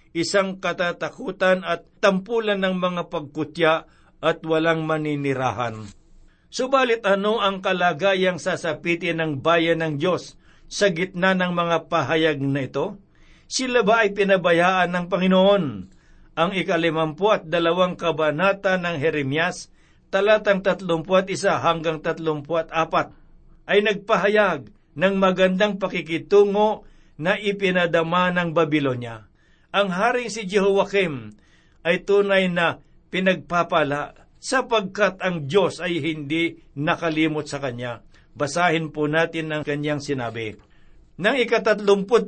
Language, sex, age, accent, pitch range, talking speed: Filipino, male, 60-79, native, 160-195 Hz, 110 wpm